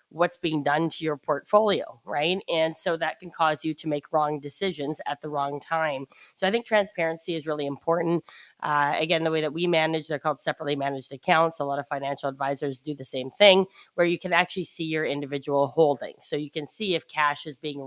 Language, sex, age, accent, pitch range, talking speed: English, female, 30-49, American, 145-170 Hz, 220 wpm